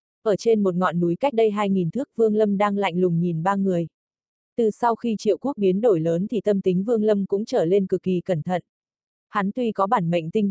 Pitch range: 180-220 Hz